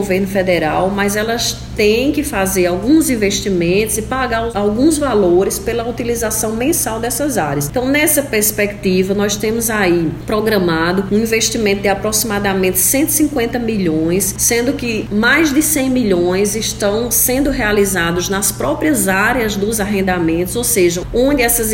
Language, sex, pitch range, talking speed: Portuguese, female, 195-240 Hz, 135 wpm